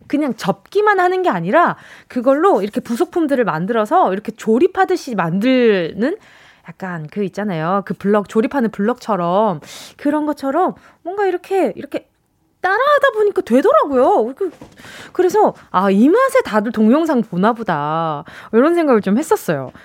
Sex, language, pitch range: female, Korean, 205-335 Hz